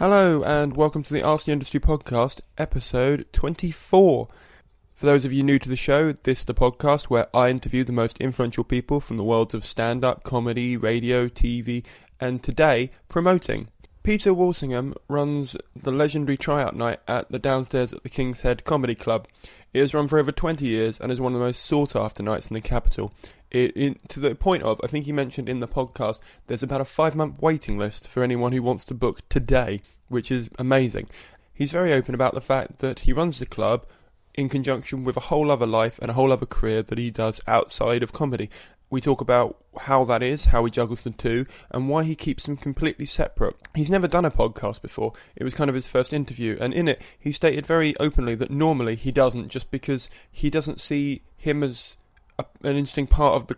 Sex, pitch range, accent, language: male, 120-145 Hz, British, English